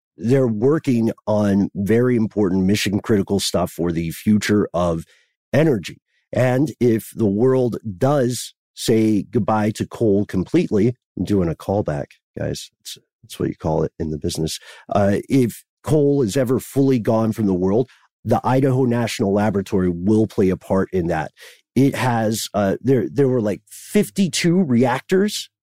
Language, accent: English, American